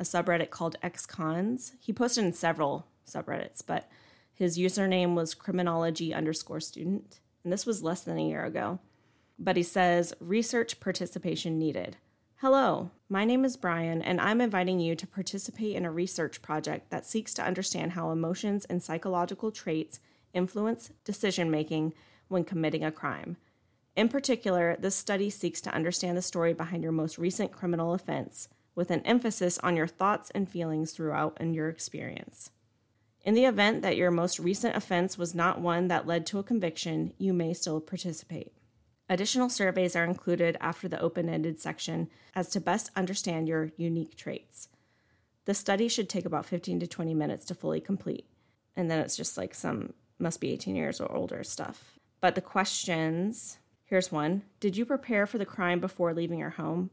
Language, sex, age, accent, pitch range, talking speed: English, female, 30-49, American, 160-195 Hz, 170 wpm